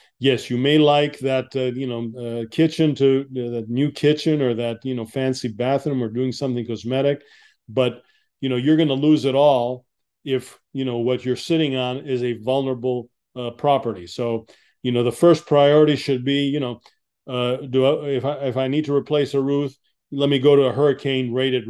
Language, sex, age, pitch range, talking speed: English, male, 40-59, 125-150 Hz, 205 wpm